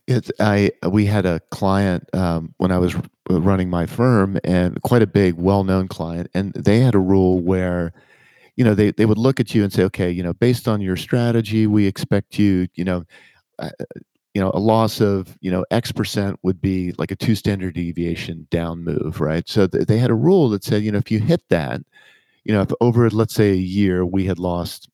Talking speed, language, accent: 220 wpm, English, American